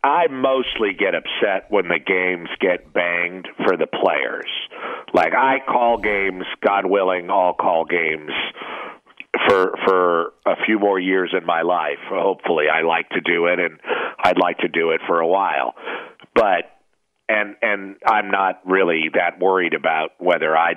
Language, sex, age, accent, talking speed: English, male, 50-69, American, 160 wpm